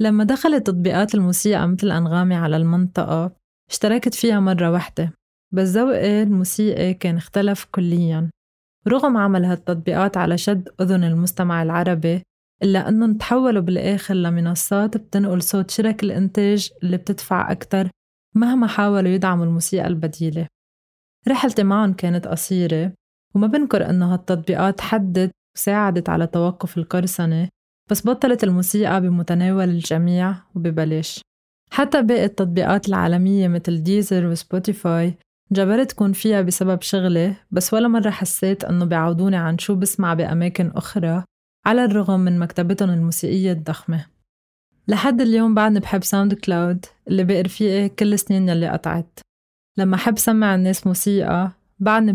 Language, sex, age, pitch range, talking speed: Arabic, female, 20-39, 175-205 Hz, 125 wpm